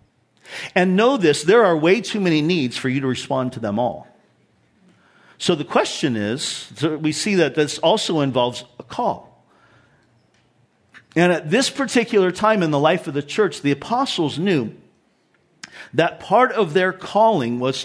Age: 50-69